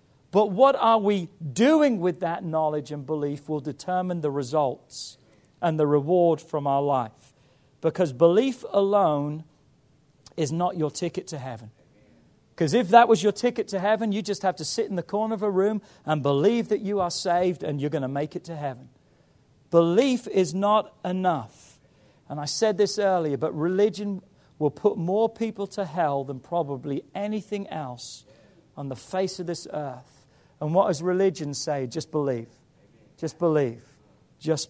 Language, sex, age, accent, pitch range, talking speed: English, male, 40-59, British, 145-195 Hz, 170 wpm